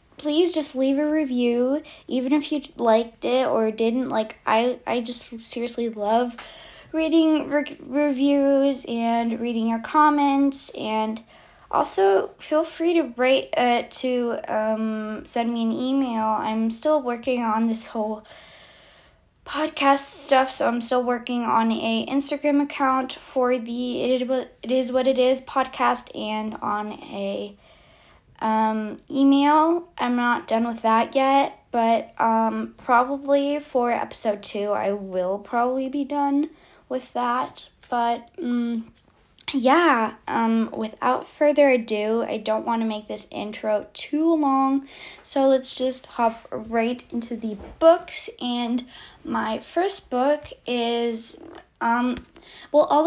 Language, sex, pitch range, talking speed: English, female, 225-285 Hz, 135 wpm